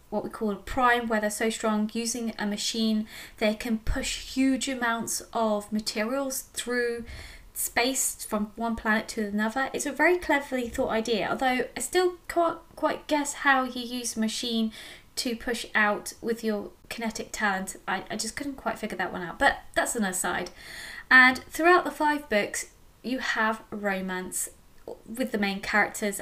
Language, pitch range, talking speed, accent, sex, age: English, 215-260 Hz, 170 wpm, British, female, 20-39